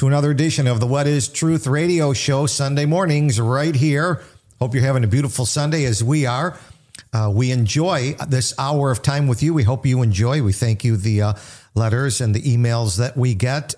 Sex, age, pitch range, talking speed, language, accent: male, 50-69, 115-150 Hz, 210 wpm, English, American